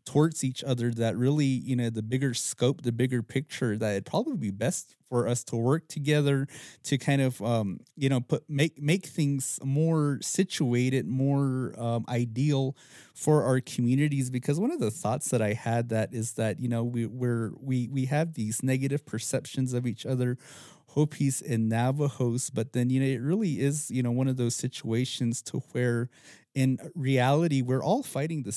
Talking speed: 185 wpm